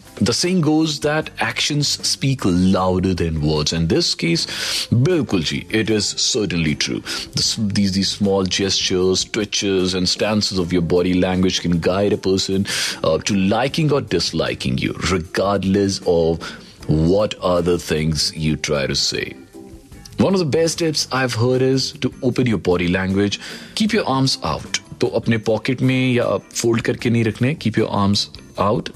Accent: native